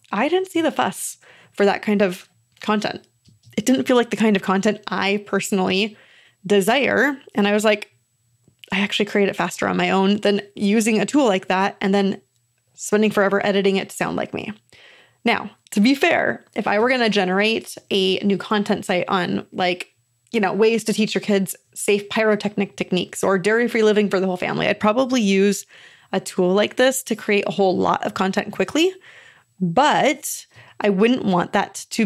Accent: American